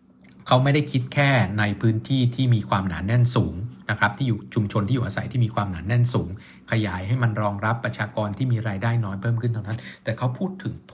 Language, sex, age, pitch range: Thai, male, 60-79, 100-130 Hz